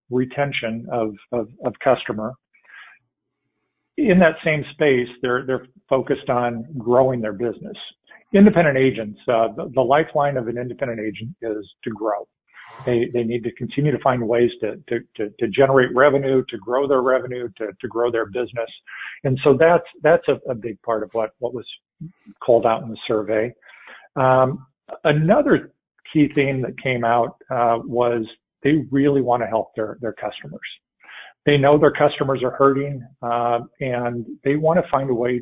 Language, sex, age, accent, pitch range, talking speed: English, male, 50-69, American, 115-140 Hz, 170 wpm